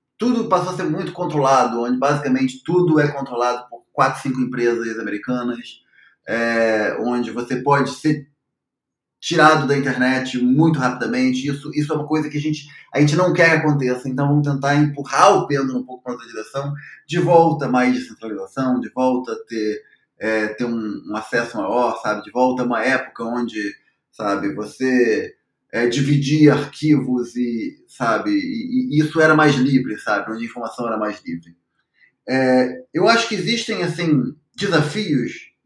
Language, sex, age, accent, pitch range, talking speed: Portuguese, male, 20-39, Brazilian, 125-155 Hz, 170 wpm